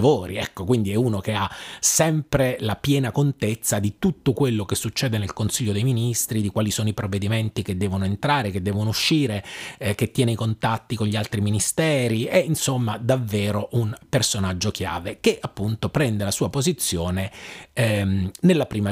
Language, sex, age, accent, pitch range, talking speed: Italian, male, 30-49, native, 100-125 Hz, 170 wpm